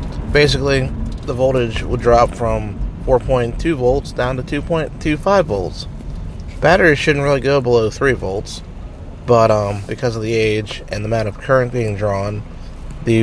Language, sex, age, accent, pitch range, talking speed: English, male, 30-49, American, 105-135 Hz, 150 wpm